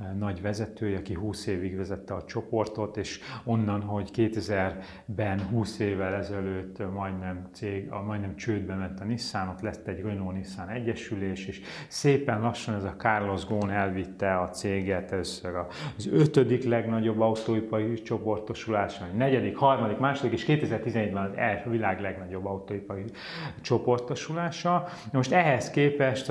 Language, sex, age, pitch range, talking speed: Hungarian, male, 30-49, 100-120 Hz, 130 wpm